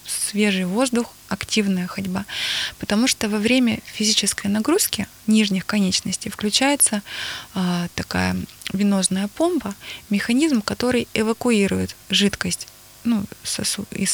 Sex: female